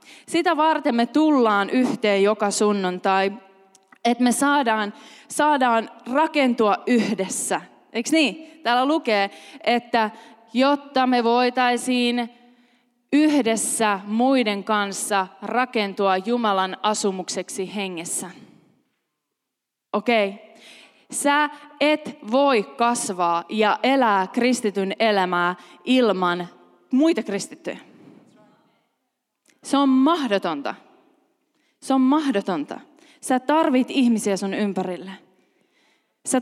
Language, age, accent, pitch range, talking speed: Finnish, 20-39, native, 210-285 Hz, 85 wpm